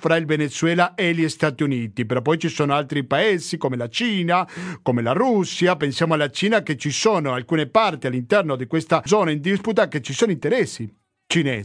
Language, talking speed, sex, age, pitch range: Italian, 190 wpm, male, 50-69, 155-200 Hz